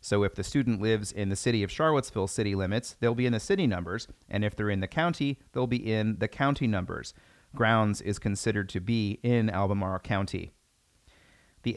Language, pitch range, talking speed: English, 100-130 Hz, 200 wpm